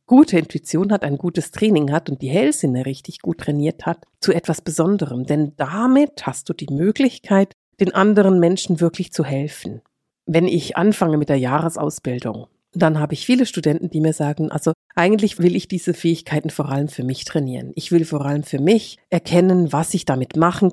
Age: 50-69